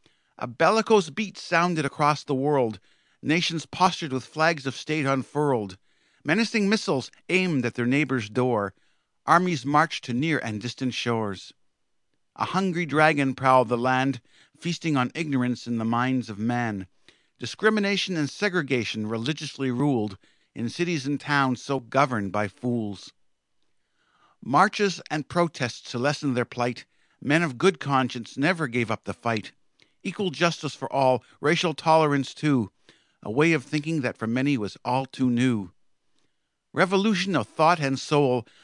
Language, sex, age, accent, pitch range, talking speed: English, male, 50-69, American, 120-165 Hz, 145 wpm